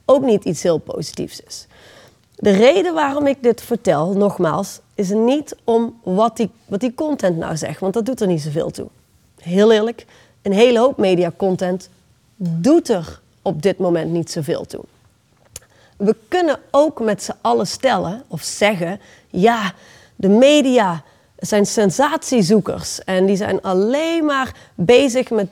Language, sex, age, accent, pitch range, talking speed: Dutch, female, 30-49, Dutch, 190-265 Hz, 160 wpm